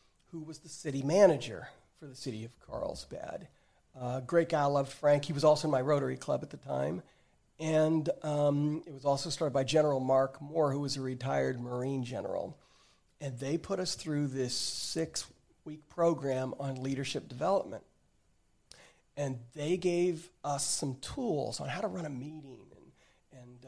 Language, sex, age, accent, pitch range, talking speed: English, male, 40-59, American, 130-155 Hz, 170 wpm